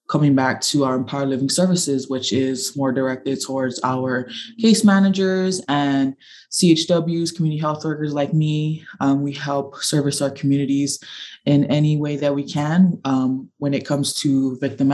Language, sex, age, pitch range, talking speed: English, female, 20-39, 135-160 Hz, 160 wpm